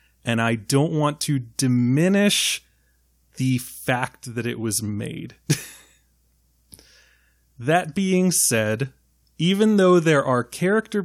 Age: 30-49